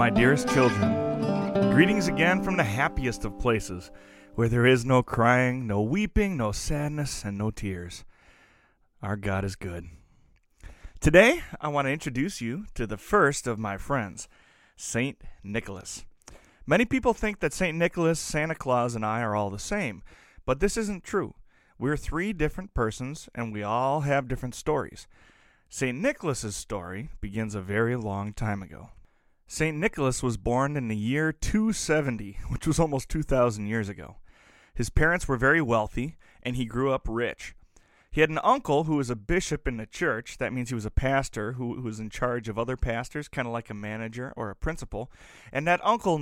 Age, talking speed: 30-49, 175 wpm